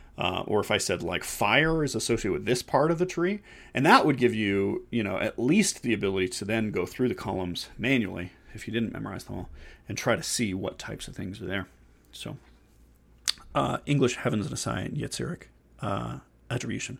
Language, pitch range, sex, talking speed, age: English, 110-140 Hz, male, 205 wpm, 30-49